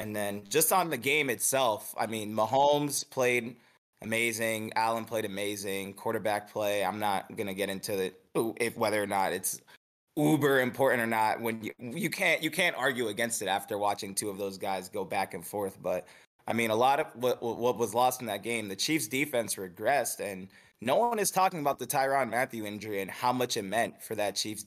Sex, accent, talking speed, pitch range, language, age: male, American, 210 wpm, 105-130 Hz, English, 20-39